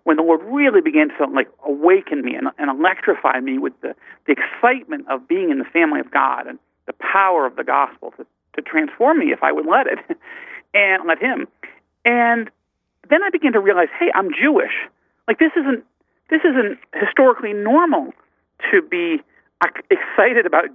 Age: 50-69